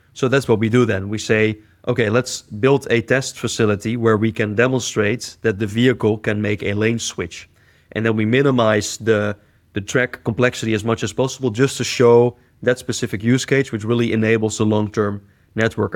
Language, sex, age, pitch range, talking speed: English, male, 30-49, 110-125 Hz, 190 wpm